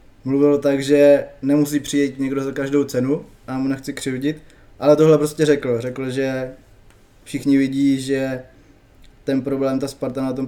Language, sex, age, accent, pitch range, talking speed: Czech, male, 20-39, native, 130-150 Hz, 160 wpm